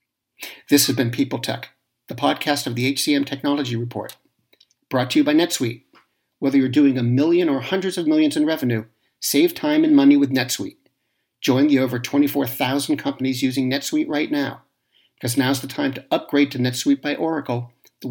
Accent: American